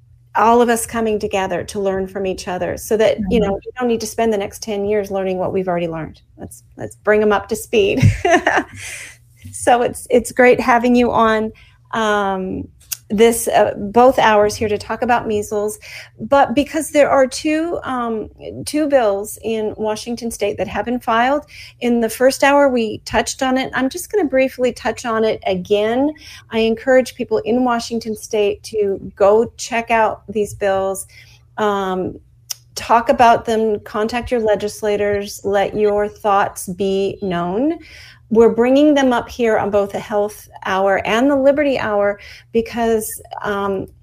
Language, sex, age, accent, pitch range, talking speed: English, female, 40-59, American, 185-240 Hz, 170 wpm